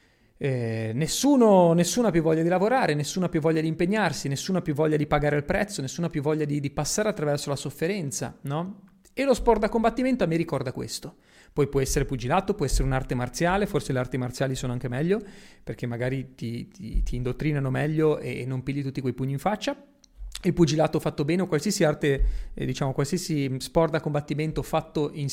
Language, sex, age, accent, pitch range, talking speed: Italian, male, 30-49, native, 135-185 Hz, 200 wpm